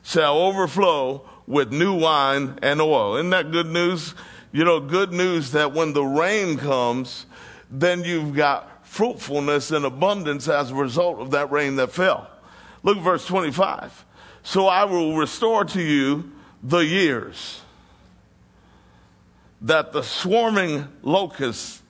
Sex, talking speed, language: male, 135 wpm, English